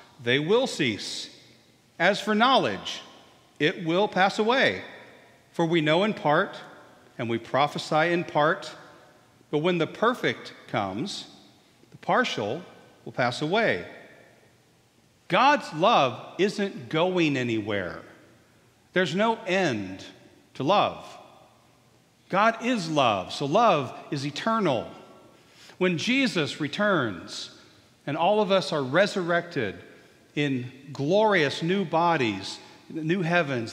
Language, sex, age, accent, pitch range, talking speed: English, male, 40-59, American, 125-195 Hz, 110 wpm